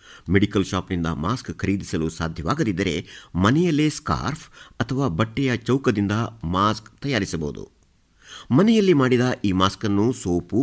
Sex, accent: male, native